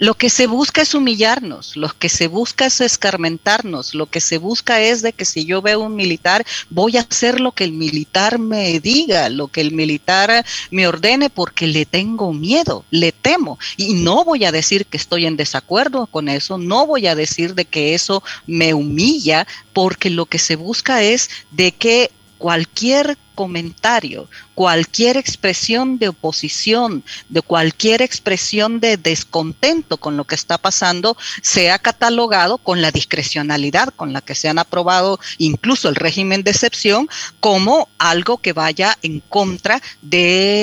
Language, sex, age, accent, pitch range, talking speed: Spanish, female, 40-59, American, 165-230 Hz, 165 wpm